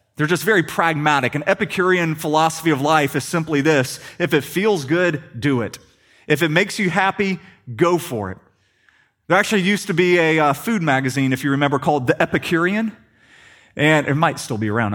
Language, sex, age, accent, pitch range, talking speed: English, male, 30-49, American, 120-195 Hz, 190 wpm